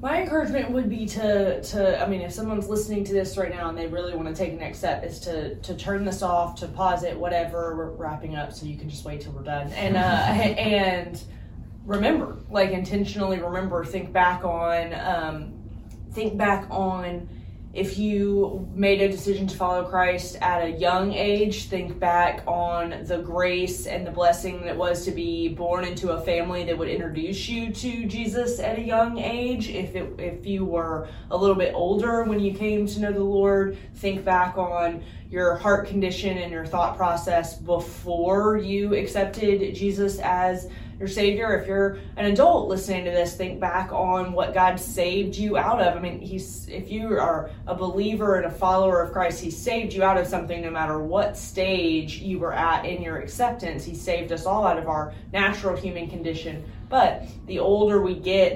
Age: 20-39